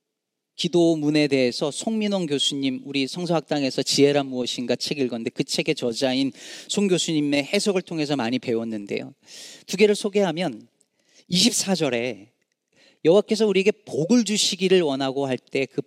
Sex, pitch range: male, 145-220 Hz